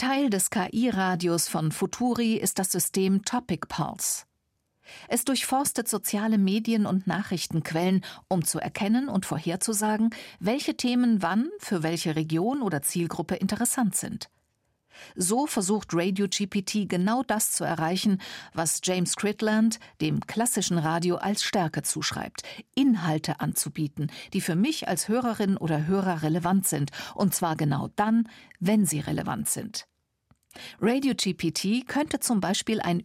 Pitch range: 175-235 Hz